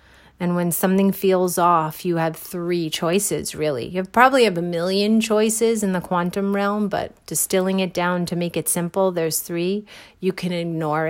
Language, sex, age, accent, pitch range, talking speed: English, female, 30-49, American, 160-200 Hz, 180 wpm